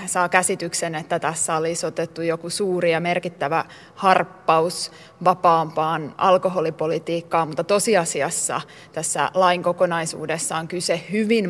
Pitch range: 170-185 Hz